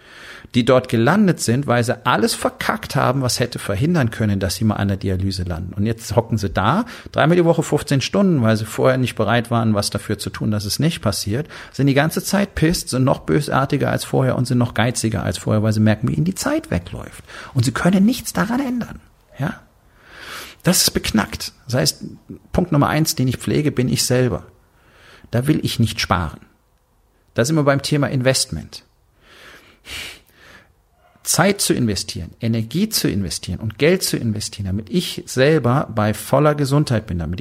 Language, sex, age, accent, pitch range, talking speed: German, male, 40-59, German, 110-145 Hz, 190 wpm